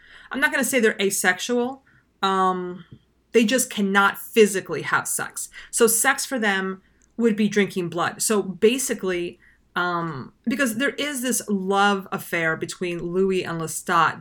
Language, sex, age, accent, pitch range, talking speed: English, female, 30-49, American, 170-220 Hz, 150 wpm